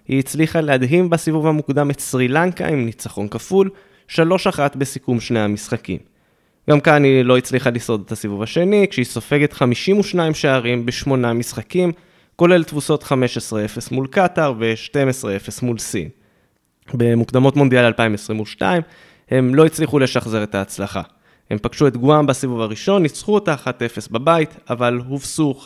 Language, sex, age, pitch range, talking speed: Hebrew, male, 20-39, 125-175 Hz, 135 wpm